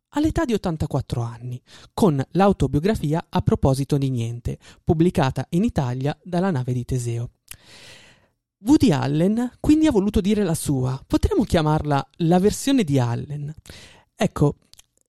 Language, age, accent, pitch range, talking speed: Italian, 20-39, native, 135-185 Hz, 125 wpm